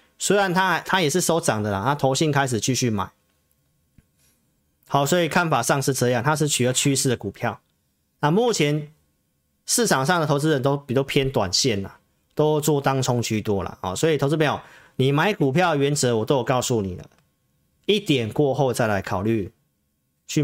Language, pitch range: Chinese, 115-155 Hz